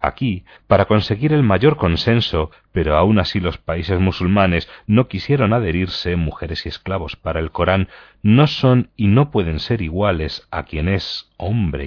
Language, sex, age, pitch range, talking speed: Spanish, male, 40-59, 85-120 Hz, 160 wpm